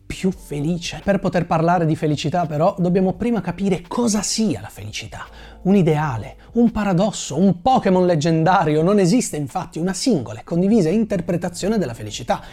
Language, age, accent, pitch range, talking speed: Italian, 30-49, native, 145-215 Hz, 155 wpm